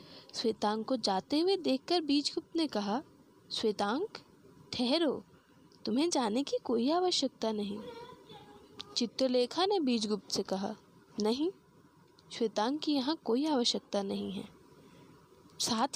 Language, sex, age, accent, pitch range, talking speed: Hindi, female, 20-39, native, 215-300 Hz, 115 wpm